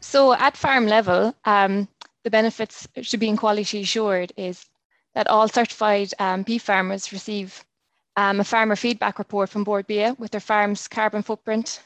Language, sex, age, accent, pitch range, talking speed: English, female, 20-39, Irish, 195-215 Hz, 160 wpm